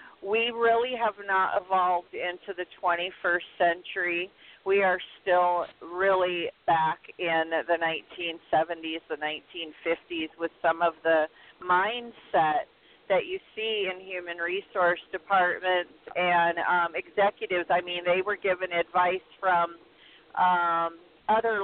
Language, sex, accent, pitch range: English, female, American, 175-210 Hz